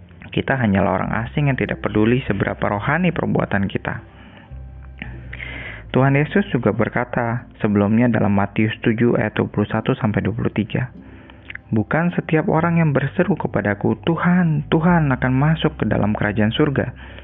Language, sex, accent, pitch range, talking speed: Indonesian, male, native, 105-140 Hz, 120 wpm